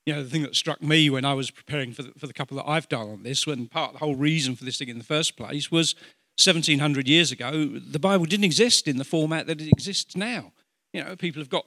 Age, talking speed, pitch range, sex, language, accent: 50-69, 280 wpm, 145-170 Hz, male, English, British